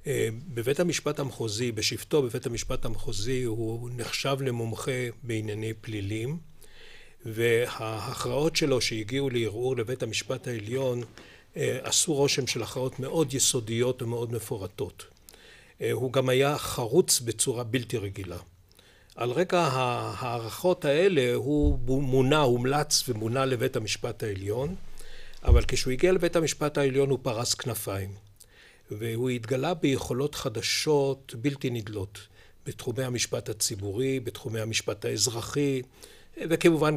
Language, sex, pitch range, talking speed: Hebrew, male, 115-140 Hz, 115 wpm